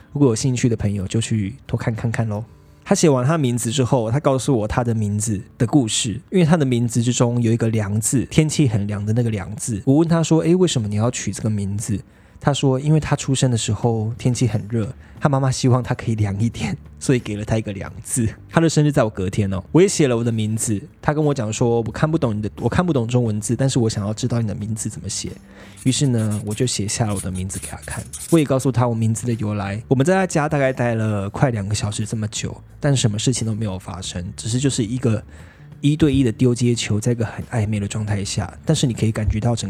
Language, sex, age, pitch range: Chinese, male, 20-39, 105-130 Hz